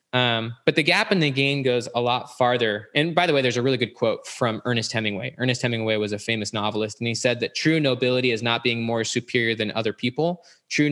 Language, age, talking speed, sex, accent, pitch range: English, 20-39, 240 wpm, male, American, 115-140 Hz